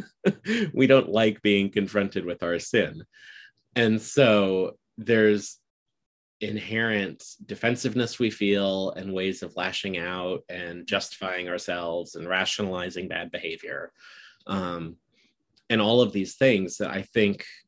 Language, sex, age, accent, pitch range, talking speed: English, male, 30-49, American, 95-115 Hz, 120 wpm